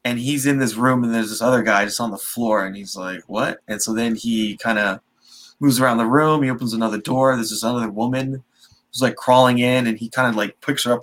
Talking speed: 260 wpm